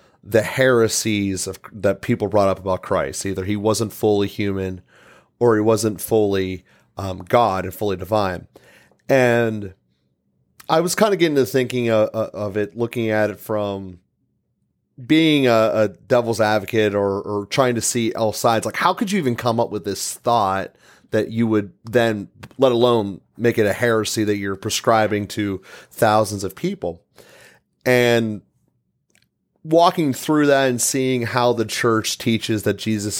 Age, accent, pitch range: 30-49, American, 100-120 Hz